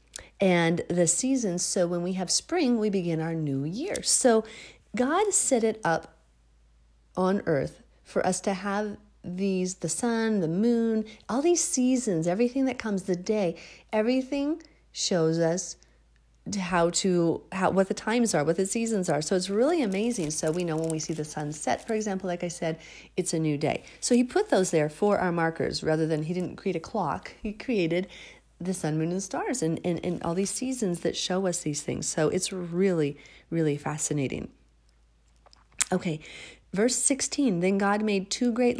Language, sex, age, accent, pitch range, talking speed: English, female, 40-59, American, 165-225 Hz, 185 wpm